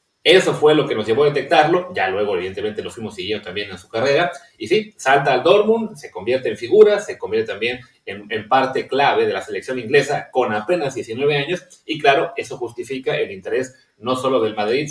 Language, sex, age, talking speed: Spanish, male, 30-49, 210 wpm